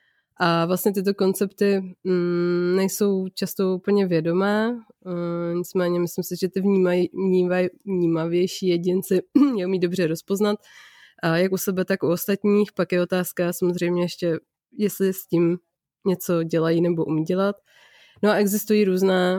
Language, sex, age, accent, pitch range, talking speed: Czech, female, 20-39, native, 175-195 Hz, 145 wpm